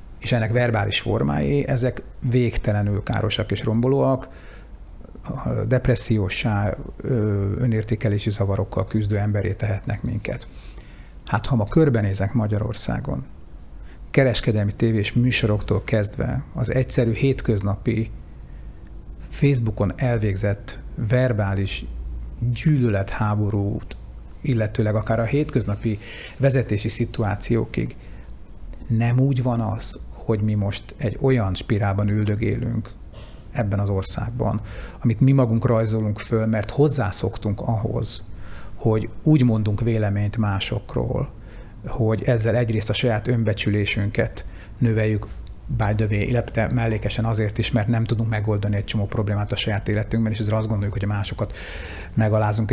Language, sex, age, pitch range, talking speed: Hungarian, male, 60-79, 100-120 Hz, 110 wpm